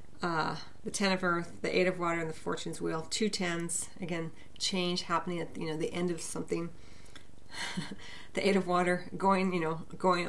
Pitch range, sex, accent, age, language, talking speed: 160-185 Hz, female, American, 40-59, English, 190 wpm